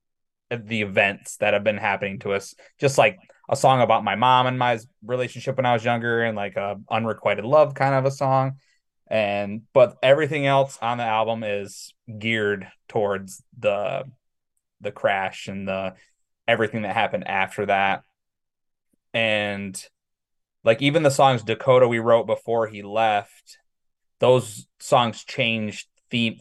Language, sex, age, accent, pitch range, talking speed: English, male, 20-39, American, 100-125 Hz, 150 wpm